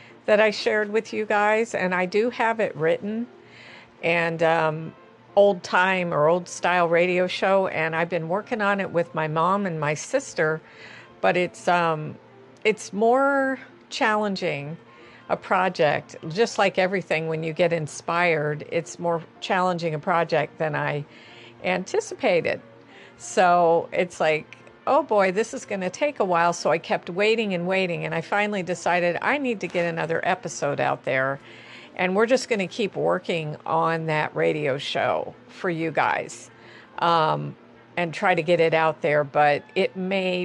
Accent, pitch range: American, 155-195 Hz